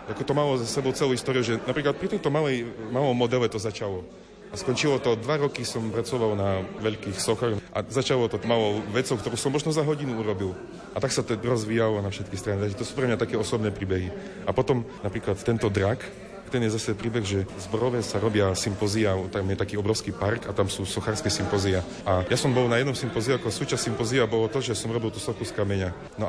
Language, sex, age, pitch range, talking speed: Slovak, male, 30-49, 105-130 Hz, 220 wpm